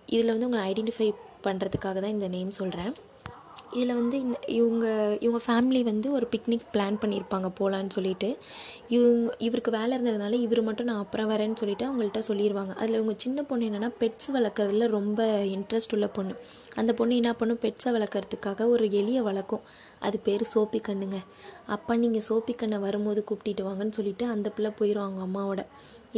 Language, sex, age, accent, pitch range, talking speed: Tamil, female, 20-39, native, 200-235 Hz, 160 wpm